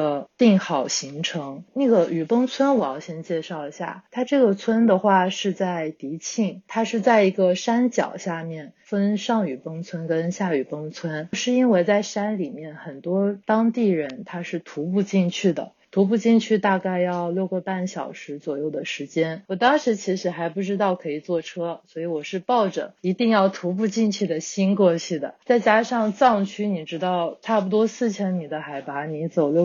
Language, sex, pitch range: Chinese, female, 165-205 Hz